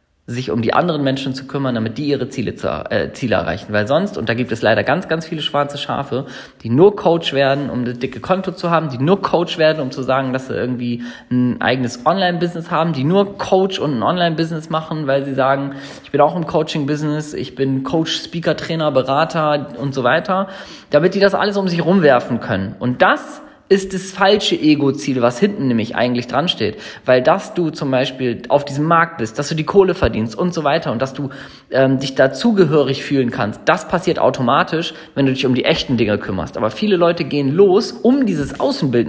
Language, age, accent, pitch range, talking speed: German, 20-39, German, 130-170 Hz, 215 wpm